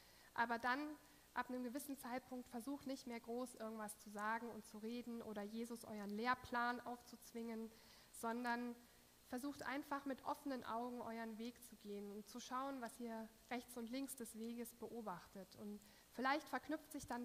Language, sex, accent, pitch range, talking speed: German, female, German, 215-245 Hz, 165 wpm